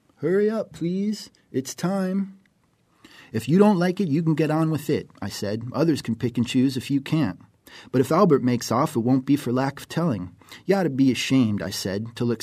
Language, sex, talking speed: English, male, 225 wpm